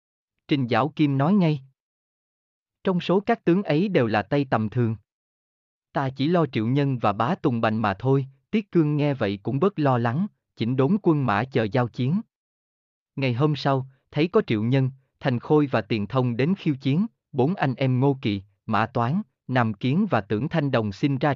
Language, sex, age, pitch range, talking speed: Vietnamese, male, 20-39, 110-155 Hz, 200 wpm